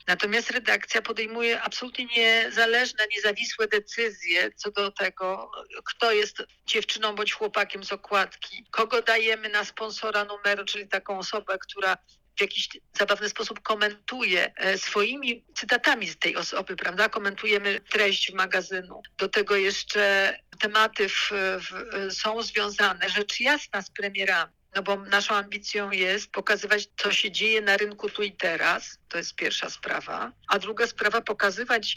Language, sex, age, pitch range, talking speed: Polish, female, 50-69, 195-225 Hz, 135 wpm